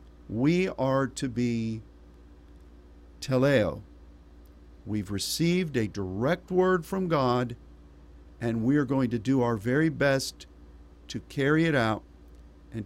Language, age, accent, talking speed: English, 50-69, American, 120 wpm